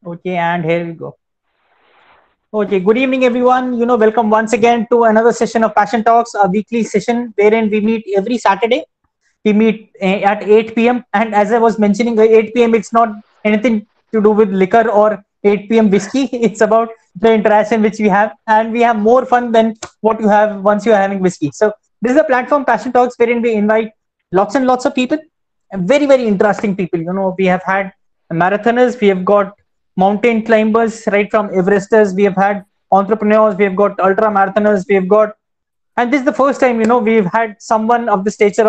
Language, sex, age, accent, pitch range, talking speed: English, male, 20-39, Indian, 205-235 Hz, 205 wpm